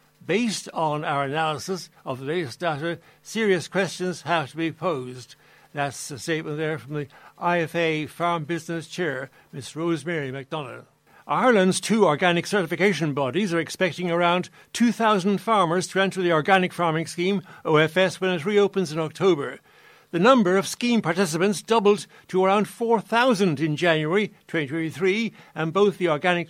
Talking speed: 145 wpm